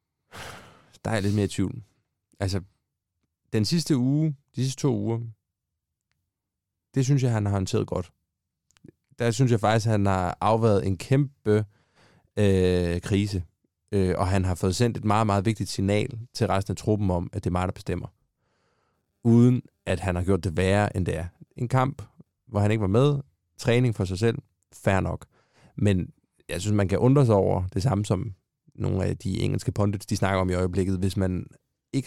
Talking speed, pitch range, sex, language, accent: 185 wpm, 95-120 Hz, male, Danish, native